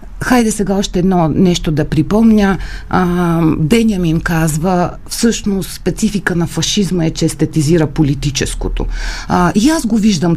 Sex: female